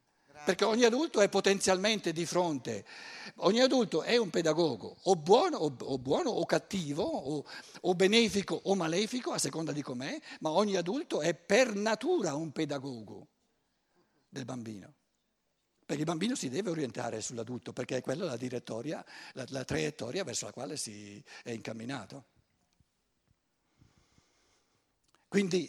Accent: native